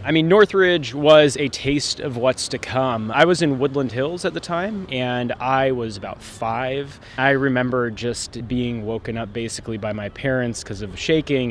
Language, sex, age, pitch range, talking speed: English, male, 20-39, 110-135 Hz, 190 wpm